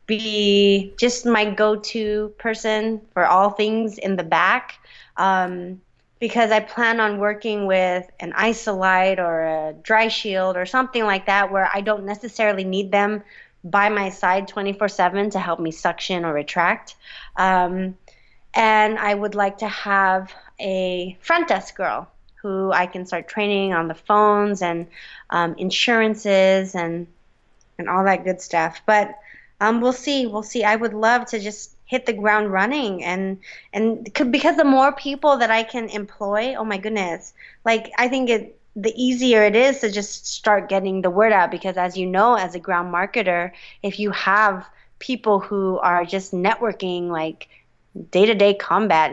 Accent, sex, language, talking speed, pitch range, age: American, female, English, 165 wpm, 185-220 Hz, 20-39